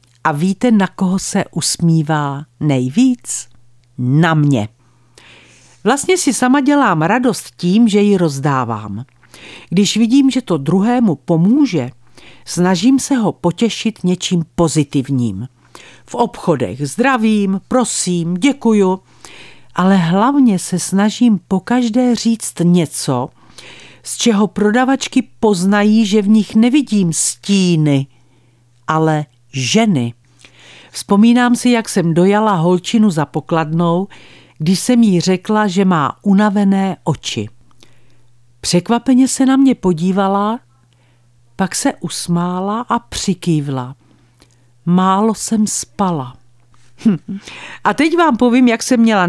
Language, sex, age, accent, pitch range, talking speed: Czech, female, 50-69, native, 140-220 Hz, 110 wpm